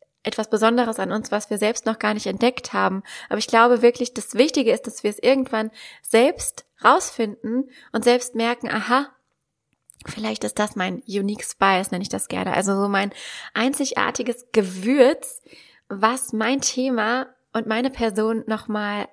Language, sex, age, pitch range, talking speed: German, female, 20-39, 205-255 Hz, 160 wpm